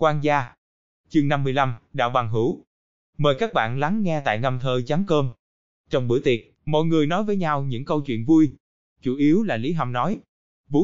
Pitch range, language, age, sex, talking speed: 125-175 Hz, Vietnamese, 20-39, male, 195 wpm